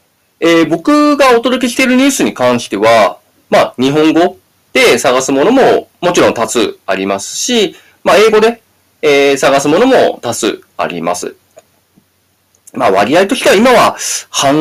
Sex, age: male, 20-39